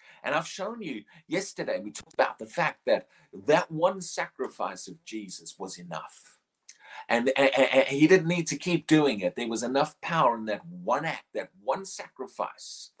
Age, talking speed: 40-59, 180 wpm